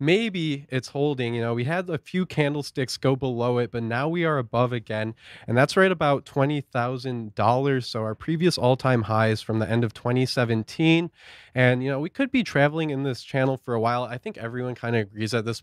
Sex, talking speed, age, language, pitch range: male, 210 wpm, 20-39, English, 115-145 Hz